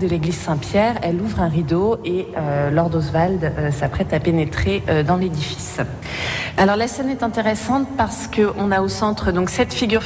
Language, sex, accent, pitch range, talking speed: French, female, French, 165-210 Hz, 185 wpm